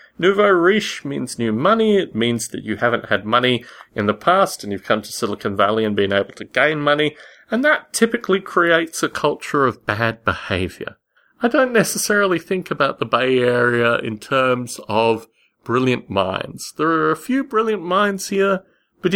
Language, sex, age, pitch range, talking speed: English, male, 30-49, 125-205 Hz, 180 wpm